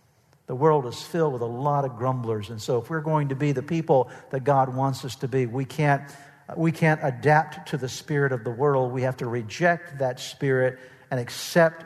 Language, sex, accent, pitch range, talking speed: English, male, American, 125-150 Hz, 220 wpm